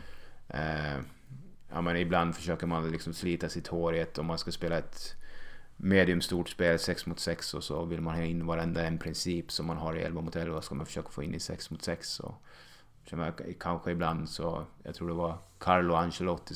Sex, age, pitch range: male, 30-49, 85-95 Hz